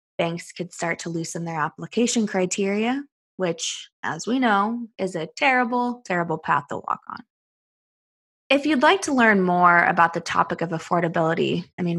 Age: 20-39